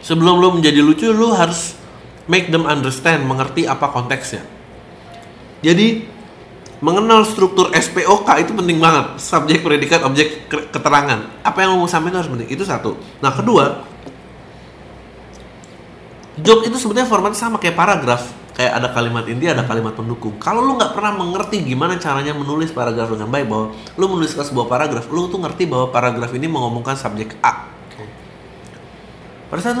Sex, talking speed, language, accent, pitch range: male, 150 wpm, English, Indonesian, 125-190 Hz